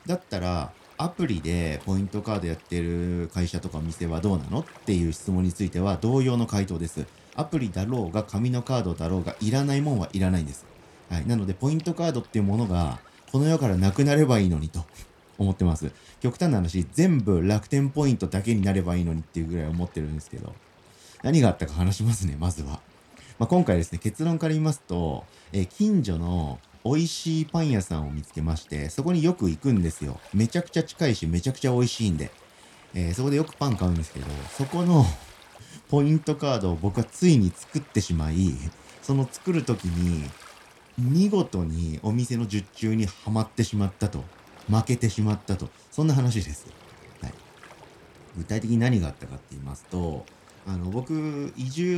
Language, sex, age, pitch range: Japanese, male, 40-59, 85-130 Hz